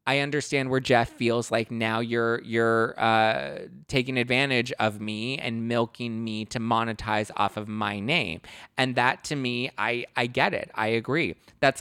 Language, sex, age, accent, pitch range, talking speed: English, male, 20-39, American, 105-125 Hz, 175 wpm